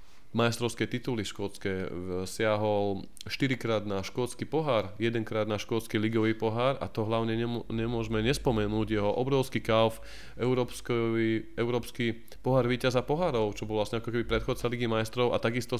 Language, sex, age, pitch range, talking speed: Slovak, male, 20-39, 110-120 Hz, 135 wpm